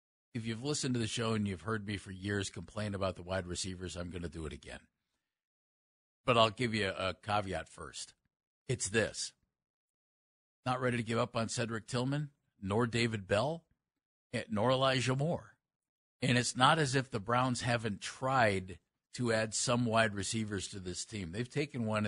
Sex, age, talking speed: male, 50-69, 180 wpm